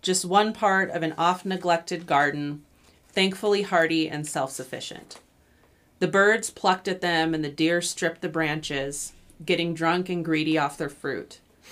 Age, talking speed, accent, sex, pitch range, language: 30-49, 150 wpm, American, female, 155-180 Hz, English